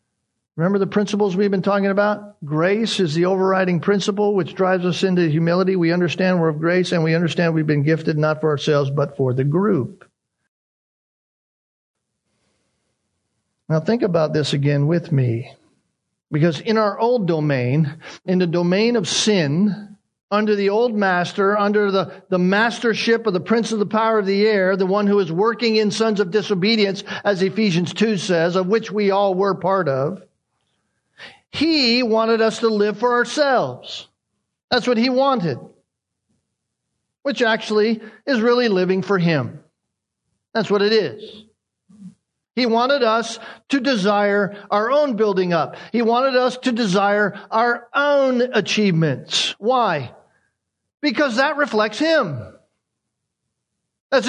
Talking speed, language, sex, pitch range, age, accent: 150 wpm, English, male, 175-225 Hz, 50-69, American